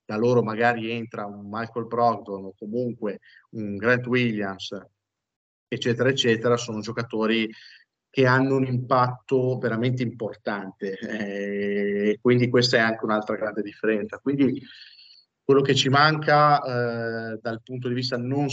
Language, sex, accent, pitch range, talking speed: Italian, male, native, 105-130 Hz, 130 wpm